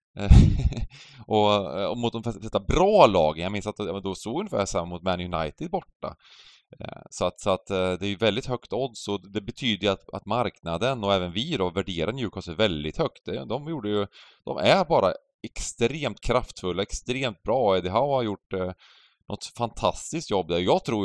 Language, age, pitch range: Swedish, 20-39, 95-115 Hz